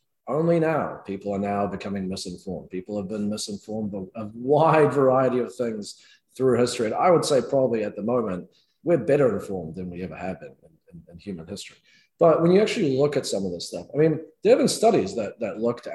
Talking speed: 220 wpm